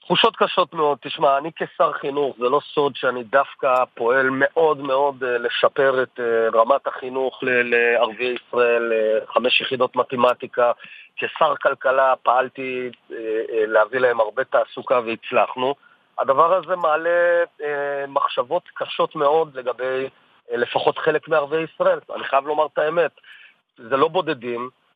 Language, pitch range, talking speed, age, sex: Hebrew, 130-180 Hz, 140 wpm, 40-59, male